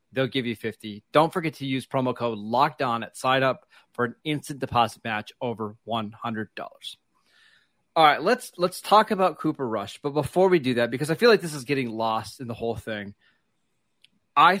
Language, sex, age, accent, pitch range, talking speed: English, male, 30-49, American, 115-145 Hz, 200 wpm